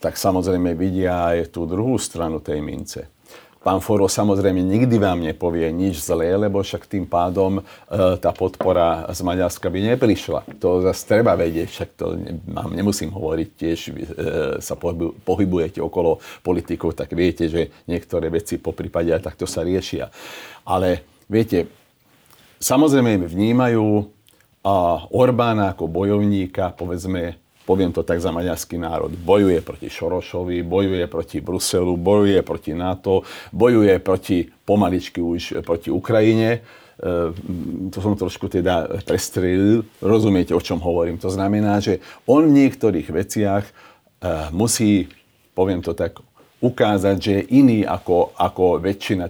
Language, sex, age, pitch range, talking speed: Slovak, male, 50-69, 85-105 Hz, 140 wpm